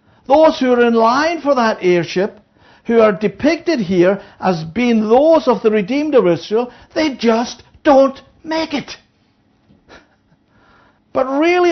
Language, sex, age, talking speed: English, male, 60-79, 140 wpm